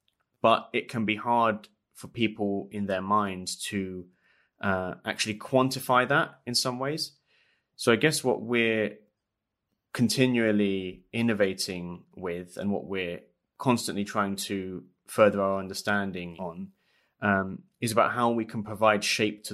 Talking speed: 140 wpm